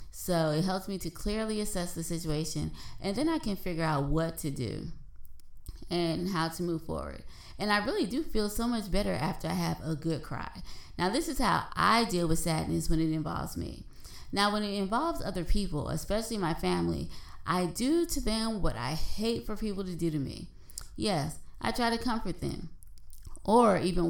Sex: female